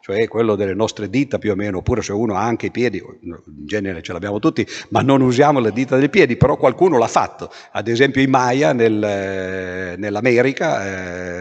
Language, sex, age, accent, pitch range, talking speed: Italian, male, 50-69, native, 100-145 Hz, 200 wpm